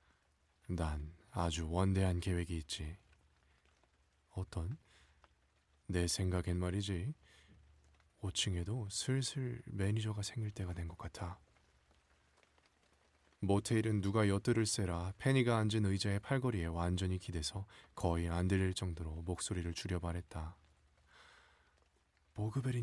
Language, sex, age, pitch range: Korean, male, 20-39, 75-105 Hz